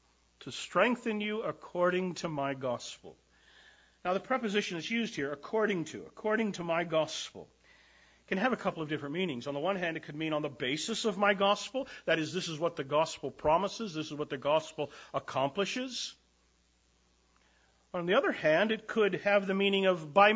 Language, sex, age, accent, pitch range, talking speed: English, male, 50-69, American, 145-205 Hz, 190 wpm